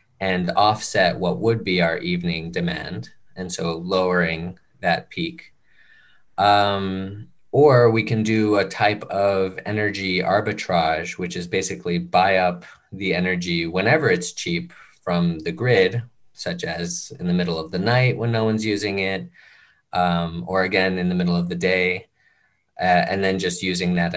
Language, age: English, 20-39